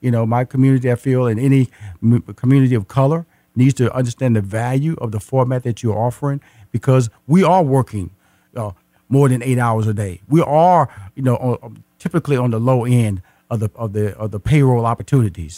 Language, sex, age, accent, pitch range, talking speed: English, male, 50-69, American, 120-155 Hz, 195 wpm